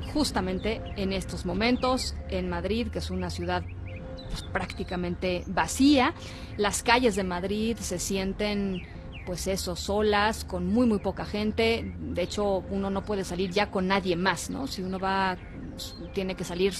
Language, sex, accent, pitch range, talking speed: Spanish, female, Mexican, 175-205 Hz, 155 wpm